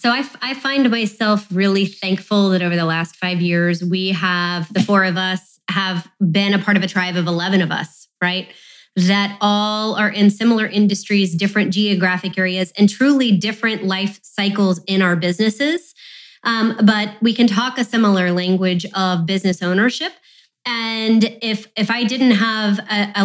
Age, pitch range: 20-39, 185-215 Hz